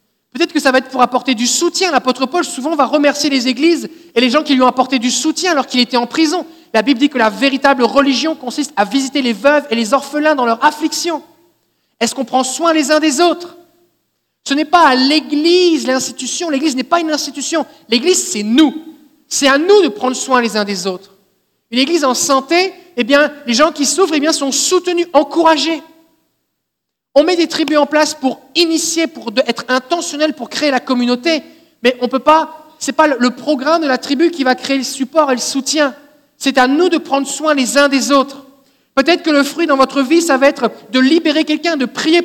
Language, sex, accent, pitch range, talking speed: French, male, French, 260-315 Hz, 220 wpm